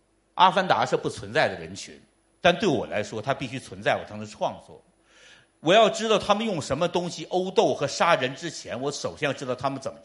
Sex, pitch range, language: male, 135-195 Hz, Chinese